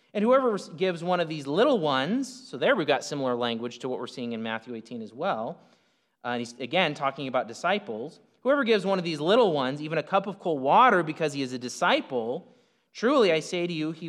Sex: male